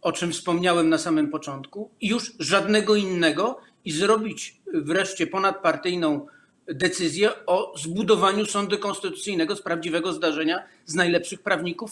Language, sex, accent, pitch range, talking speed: Polish, male, native, 165-210 Hz, 120 wpm